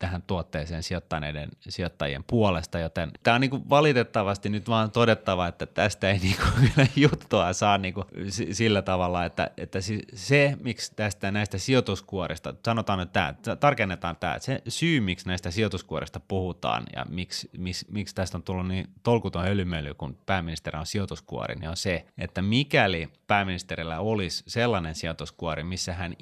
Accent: native